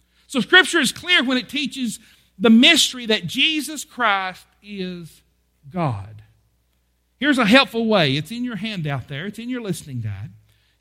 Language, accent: English, American